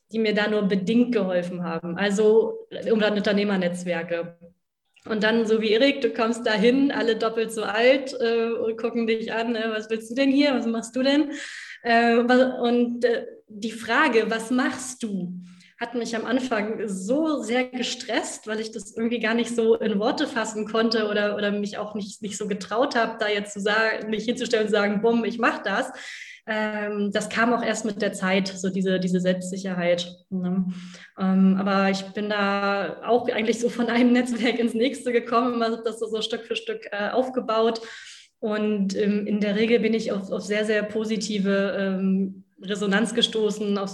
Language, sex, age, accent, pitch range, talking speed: German, female, 20-39, German, 200-230 Hz, 180 wpm